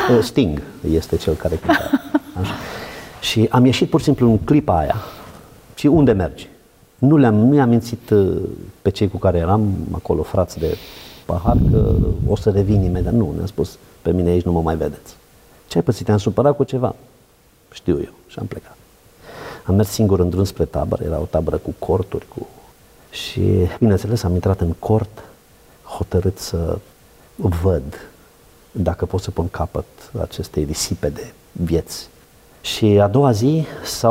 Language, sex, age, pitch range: Romanian, male, 50-69, 90-120 Hz